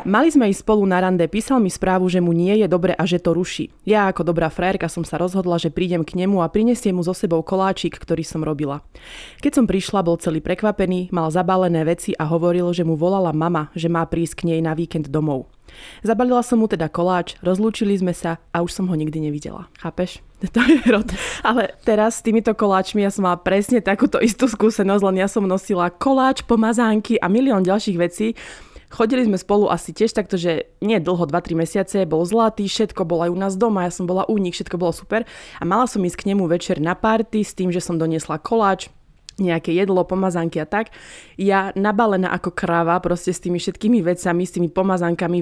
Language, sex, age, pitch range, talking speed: Slovak, female, 20-39, 170-205 Hz, 210 wpm